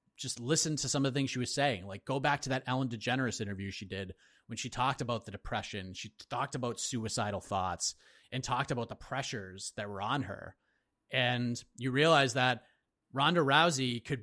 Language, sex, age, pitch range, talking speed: English, male, 30-49, 110-130 Hz, 200 wpm